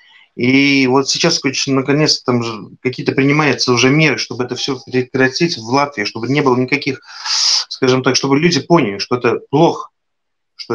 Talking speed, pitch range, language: 155 wpm, 125-165 Hz, Russian